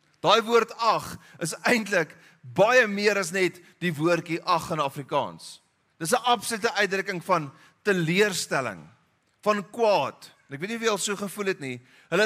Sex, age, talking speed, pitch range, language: male, 40-59, 160 wpm, 160-210 Hz, English